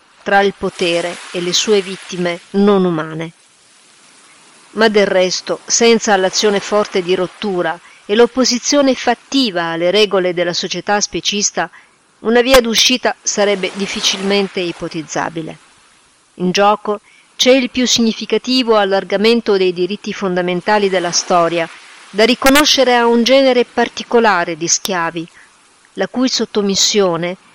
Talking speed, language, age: 120 wpm, Italian, 50-69